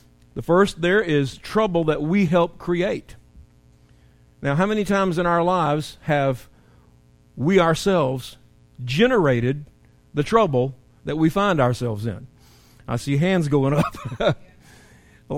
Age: 50-69